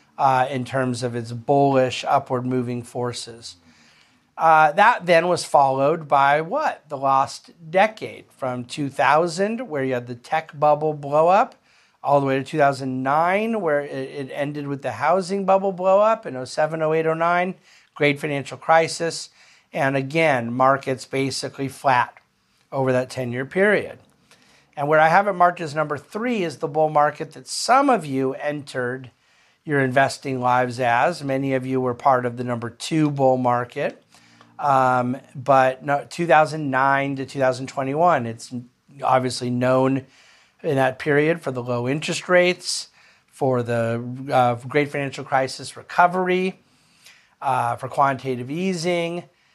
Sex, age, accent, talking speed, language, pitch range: male, 50-69, American, 145 wpm, English, 130-160 Hz